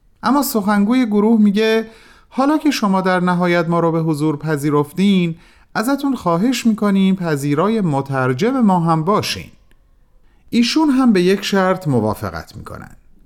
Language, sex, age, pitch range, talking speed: Persian, male, 40-59, 115-190 Hz, 130 wpm